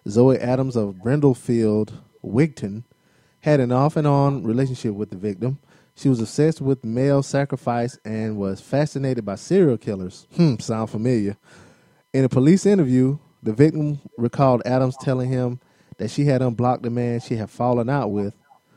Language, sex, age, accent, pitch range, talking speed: English, male, 20-39, American, 110-130 Hz, 155 wpm